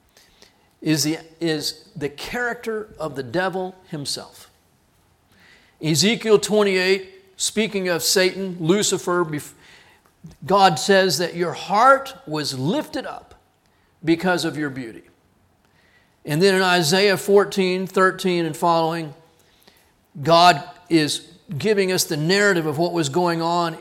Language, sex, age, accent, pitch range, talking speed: English, male, 40-59, American, 160-205 Hz, 115 wpm